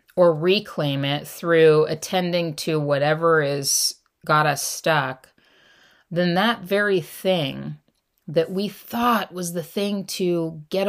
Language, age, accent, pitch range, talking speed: English, 30-49, American, 150-185 Hz, 125 wpm